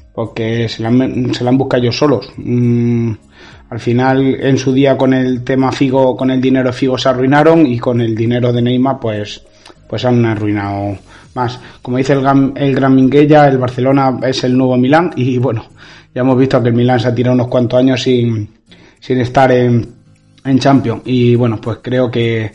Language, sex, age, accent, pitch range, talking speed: Spanish, male, 30-49, Spanish, 120-135 Hz, 195 wpm